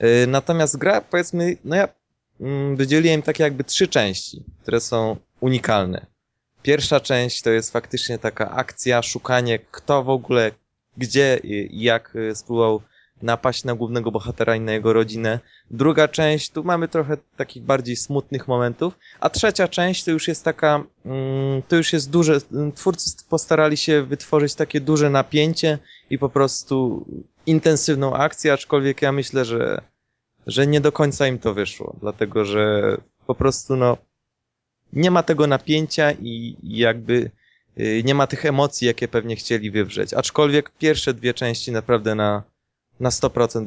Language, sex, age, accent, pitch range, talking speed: Polish, male, 20-39, native, 110-145 Hz, 145 wpm